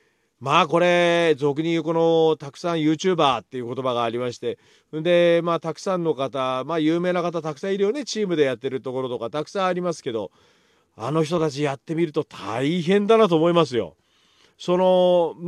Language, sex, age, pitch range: Japanese, male, 40-59, 140-185 Hz